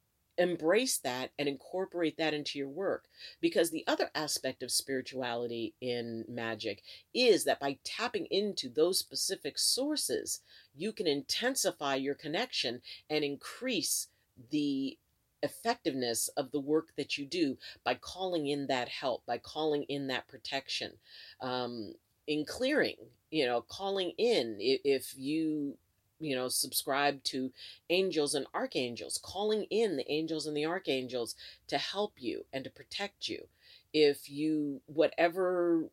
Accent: American